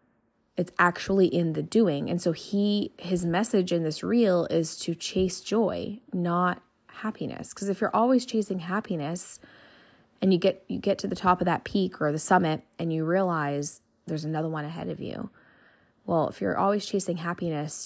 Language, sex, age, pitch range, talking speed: English, female, 20-39, 170-200 Hz, 180 wpm